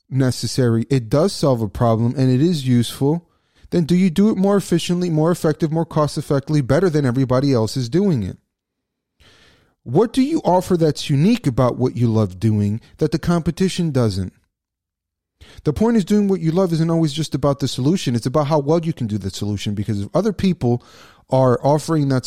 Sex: male